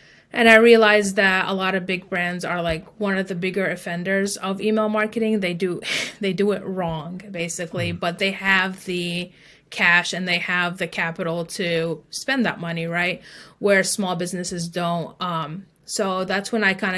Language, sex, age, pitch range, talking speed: English, female, 30-49, 175-205 Hz, 180 wpm